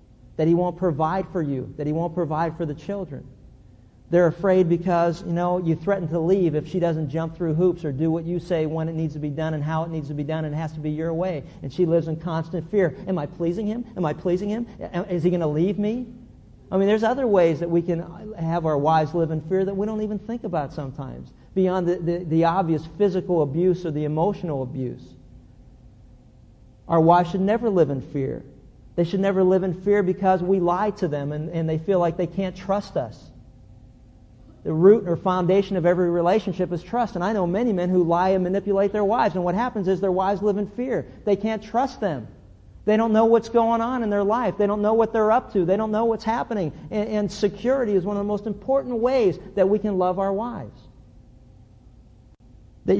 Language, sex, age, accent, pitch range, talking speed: English, male, 50-69, American, 155-200 Hz, 230 wpm